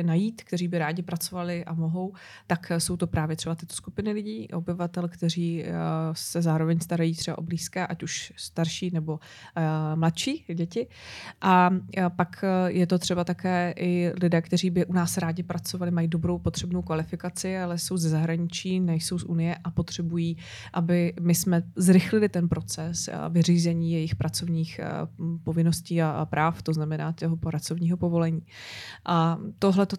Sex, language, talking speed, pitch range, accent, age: female, Czech, 150 wpm, 165-180 Hz, native, 20-39